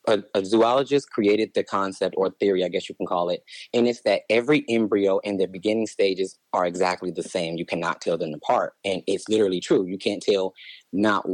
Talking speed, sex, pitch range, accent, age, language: 210 wpm, male, 95-110 Hz, American, 30-49, English